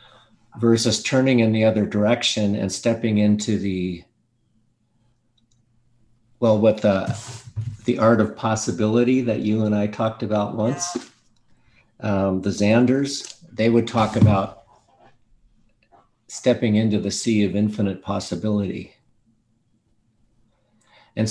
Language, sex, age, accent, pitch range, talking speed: English, male, 50-69, American, 105-120 Hz, 110 wpm